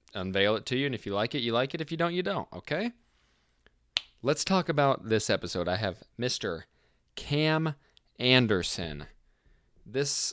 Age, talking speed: 20-39, 170 wpm